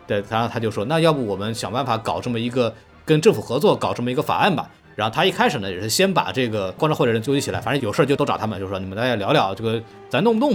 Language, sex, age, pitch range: Chinese, male, 20-39, 110-155 Hz